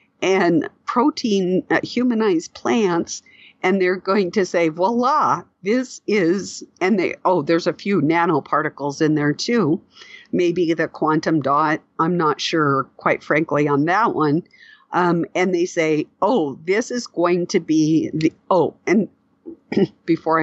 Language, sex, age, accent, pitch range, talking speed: English, female, 50-69, American, 150-180 Hz, 145 wpm